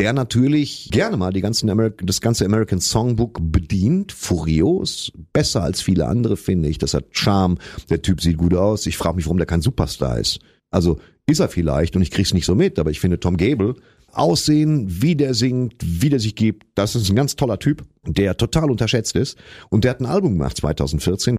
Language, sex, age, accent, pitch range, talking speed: German, male, 40-59, German, 90-135 Hz, 215 wpm